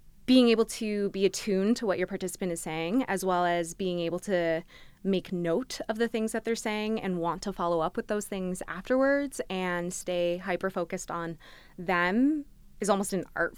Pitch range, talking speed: 170-195 Hz, 195 wpm